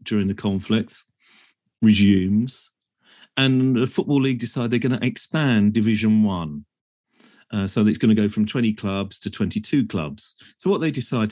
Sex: male